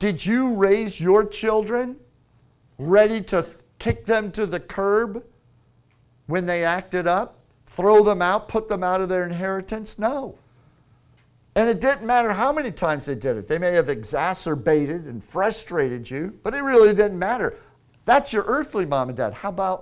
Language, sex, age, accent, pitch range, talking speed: English, male, 50-69, American, 130-205 Hz, 165 wpm